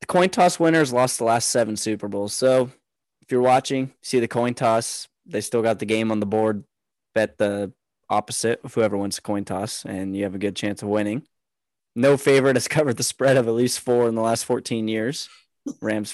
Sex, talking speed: male, 220 wpm